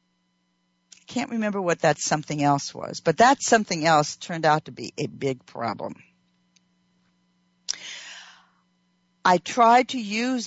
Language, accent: English, American